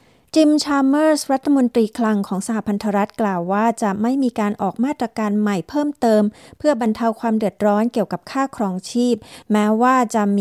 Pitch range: 195-240 Hz